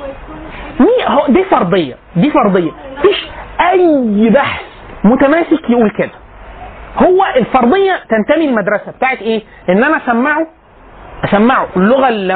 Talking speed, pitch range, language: 105 wpm, 195-300 Hz, Arabic